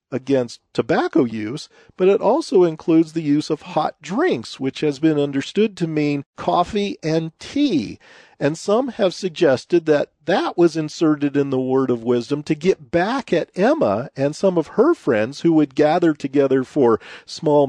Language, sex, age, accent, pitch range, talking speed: English, male, 50-69, American, 145-210 Hz, 170 wpm